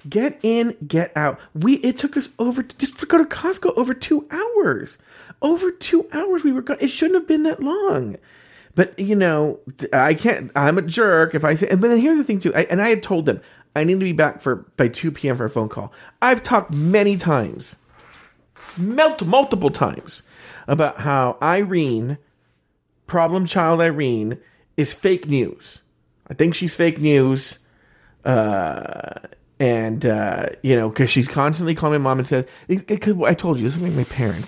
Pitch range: 130-205 Hz